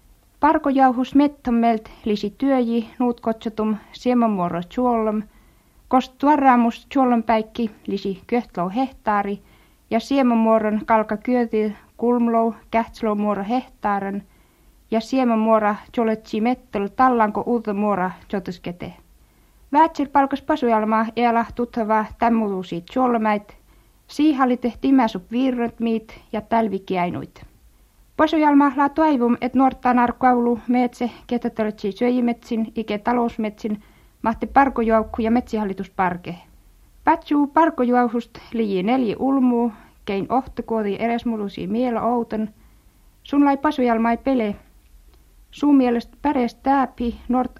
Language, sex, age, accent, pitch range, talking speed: Finnish, female, 50-69, native, 215-250 Hz, 90 wpm